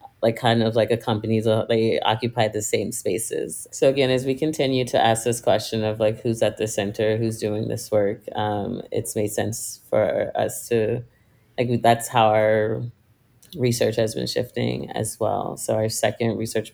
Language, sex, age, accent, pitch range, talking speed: English, female, 30-49, American, 110-125 Hz, 185 wpm